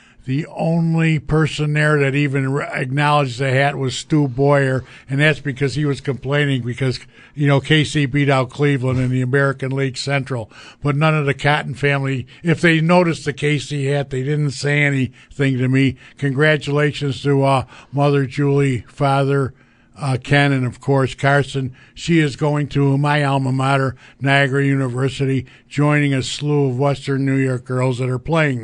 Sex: male